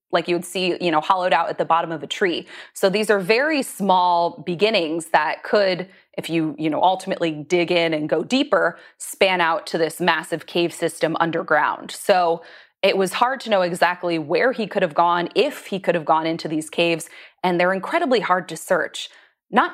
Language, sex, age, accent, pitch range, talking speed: English, female, 20-39, American, 165-205 Hz, 205 wpm